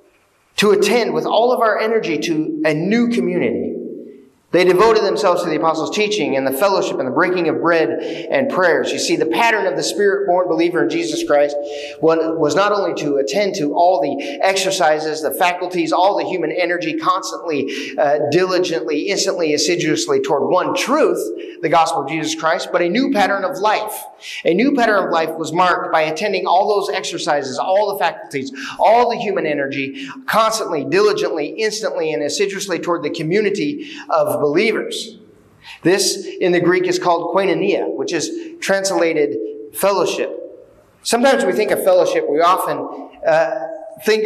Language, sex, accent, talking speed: English, male, American, 165 wpm